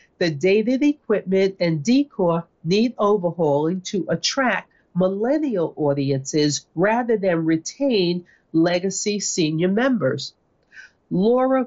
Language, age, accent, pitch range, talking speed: English, 40-59, American, 165-230 Hz, 95 wpm